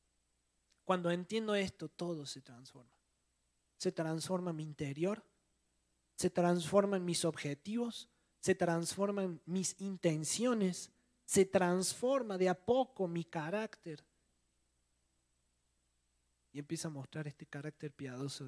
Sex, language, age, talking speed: male, Spanish, 30-49, 105 wpm